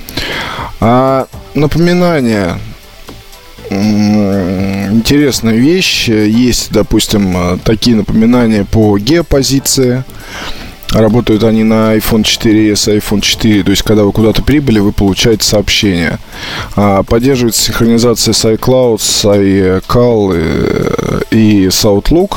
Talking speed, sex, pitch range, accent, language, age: 110 wpm, male, 105-125 Hz, native, Russian, 20-39